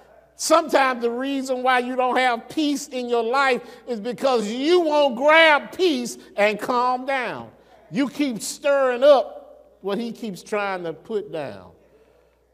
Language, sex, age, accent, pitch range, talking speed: English, male, 50-69, American, 145-220 Hz, 150 wpm